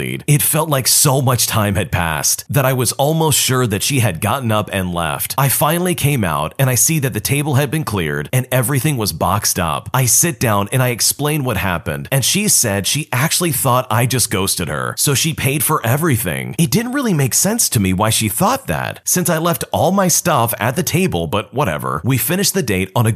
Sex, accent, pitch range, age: male, American, 100-145 Hz, 30-49